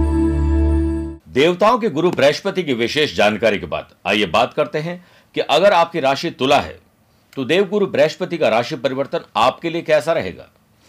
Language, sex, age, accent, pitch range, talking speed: Hindi, male, 50-69, native, 115-155 Hz, 165 wpm